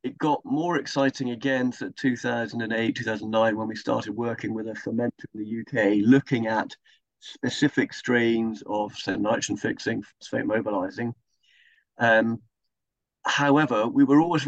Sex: male